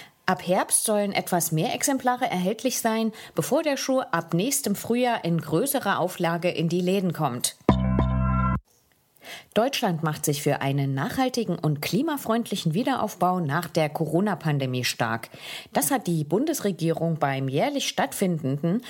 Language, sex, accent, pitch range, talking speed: English, female, German, 155-235 Hz, 130 wpm